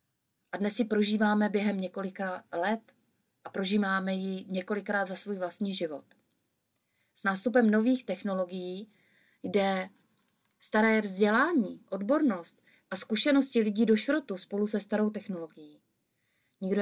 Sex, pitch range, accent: female, 180-215 Hz, native